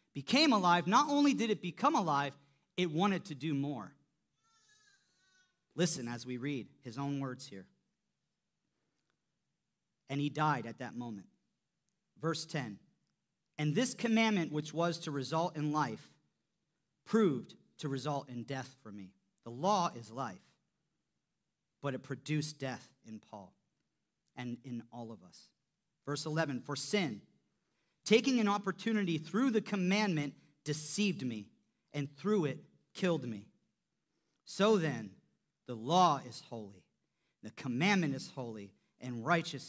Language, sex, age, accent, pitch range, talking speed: English, male, 40-59, American, 130-185 Hz, 135 wpm